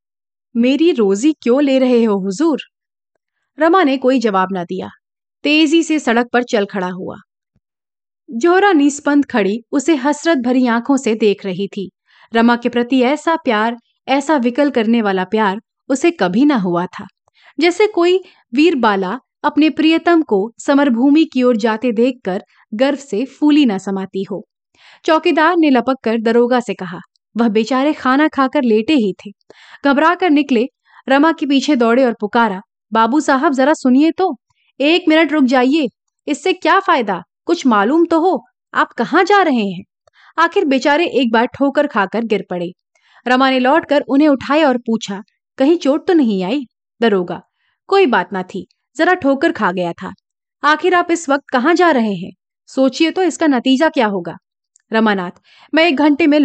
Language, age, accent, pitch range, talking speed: Hindi, 30-49, native, 220-310 Hz, 165 wpm